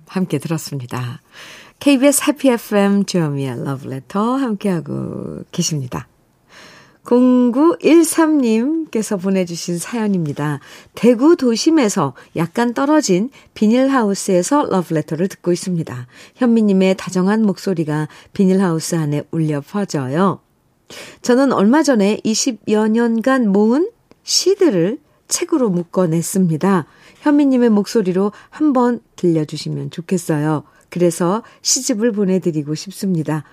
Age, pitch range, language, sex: 50-69, 170-245 Hz, Korean, female